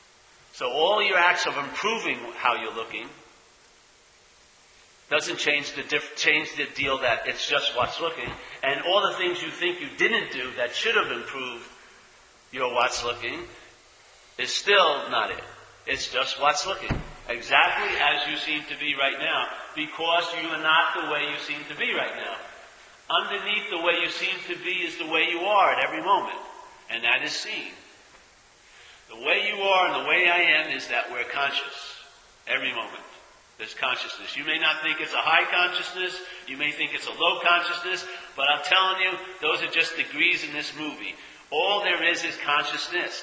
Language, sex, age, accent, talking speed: English, male, 50-69, American, 180 wpm